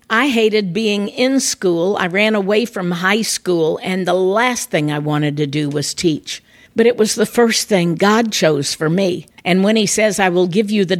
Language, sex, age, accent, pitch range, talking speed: English, female, 50-69, American, 185-230 Hz, 220 wpm